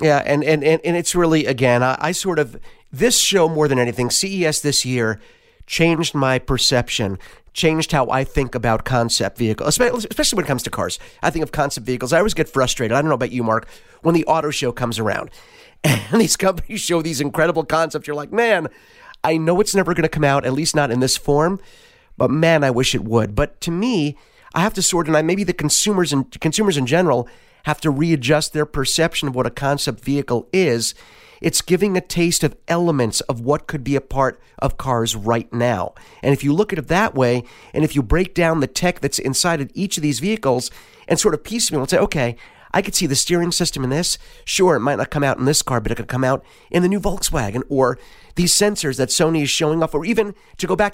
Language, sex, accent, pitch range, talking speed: English, male, American, 130-175 Hz, 230 wpm